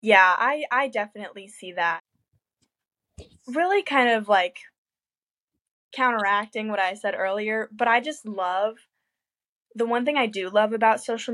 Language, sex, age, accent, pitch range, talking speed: English, female, 10-29, American, 200-240 Hz, 145 wpm